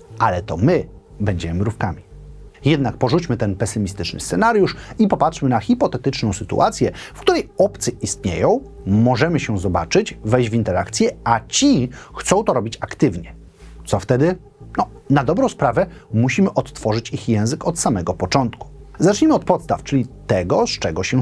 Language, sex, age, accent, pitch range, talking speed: Polish, male, 30-49, native, 105-155 Hz, 145 wpm